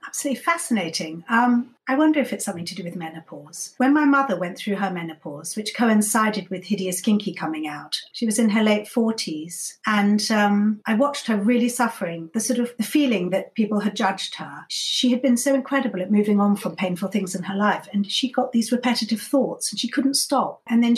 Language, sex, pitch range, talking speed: English, female, 195-240 Hz, 215 wpm